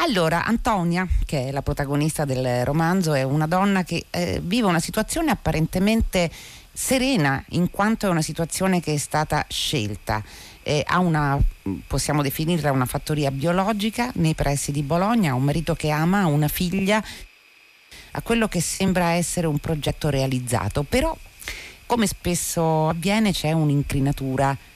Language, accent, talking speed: Italian, native, 150 wpm